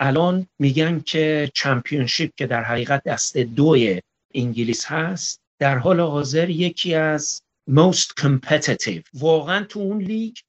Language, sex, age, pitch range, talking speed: Persian, male, 50-69, 140-180 Hz, 125 wpm